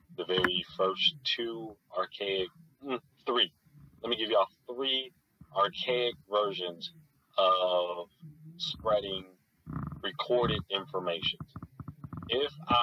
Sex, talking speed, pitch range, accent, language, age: male, 85 wpm, 90-145 Hz, American, English, 30-49